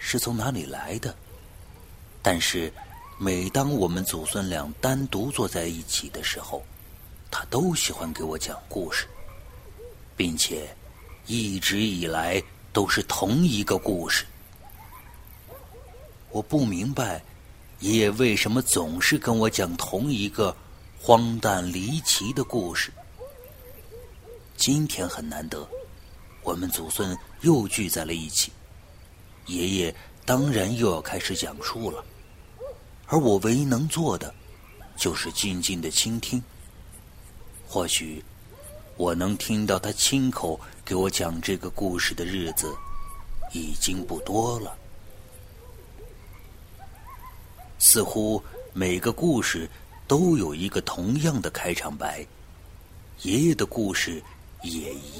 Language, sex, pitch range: Chinese, male, 85-115 Hz